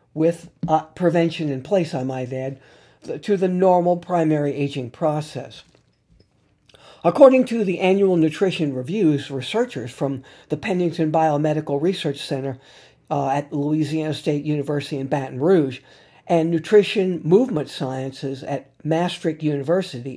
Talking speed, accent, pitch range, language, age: 125 wpm, American, 140-175 Hz, English, 50-69